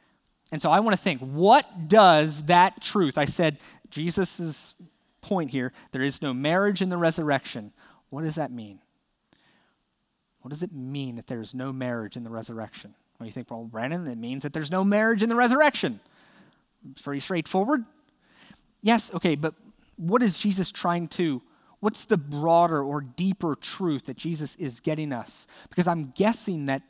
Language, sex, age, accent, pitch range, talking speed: English, male, 30-49, American, 135-190 Hz, 170 wpm